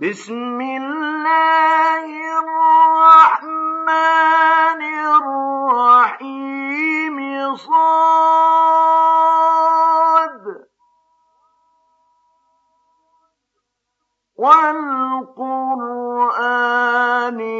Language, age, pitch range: Arabic, 50-69, 225-320 Hz